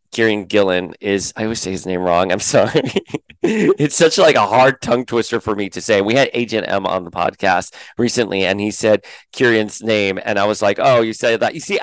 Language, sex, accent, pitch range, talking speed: English, male, American, 95-120 Hz, 230 wpm